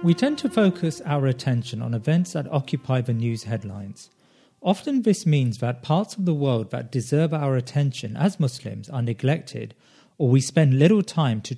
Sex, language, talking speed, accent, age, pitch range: male, English, 180 wpm, British, 40-59, 125-170 Hz